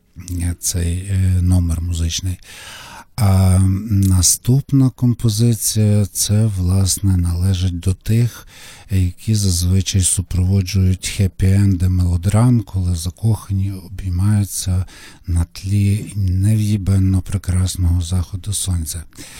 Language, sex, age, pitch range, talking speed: Ukrainian, male, 50-69, 95-110 Hz, 75 wpm